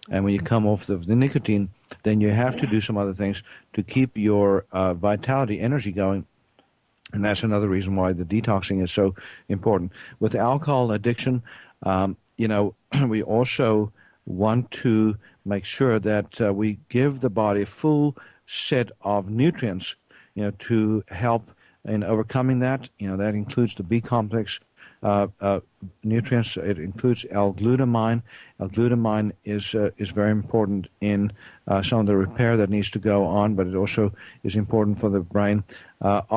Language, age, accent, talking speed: English, 60-79, American, 165 wpm